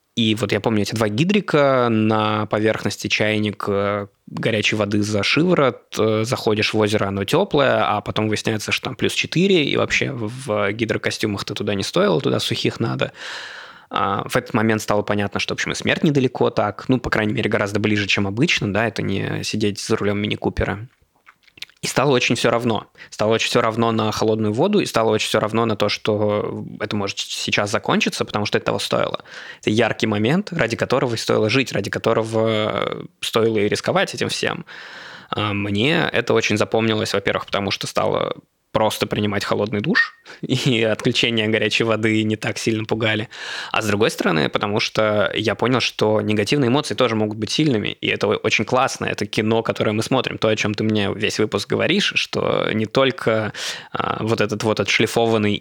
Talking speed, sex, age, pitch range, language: 180 wpm, male, 20-39, 105-115 Hz, Russian